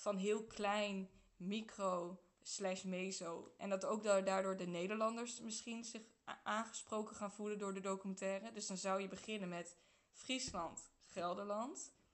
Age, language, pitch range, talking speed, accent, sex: 20-39, Dutch, 185-210 Hz, 140 wpm, Dutch, female